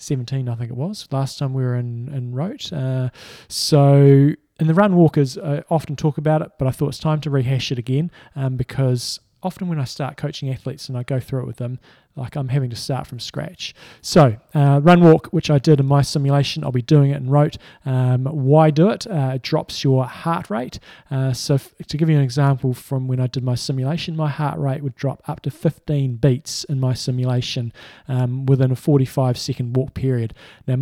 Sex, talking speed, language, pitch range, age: male, 215 wpm, English, 125-145 Hz, 20-39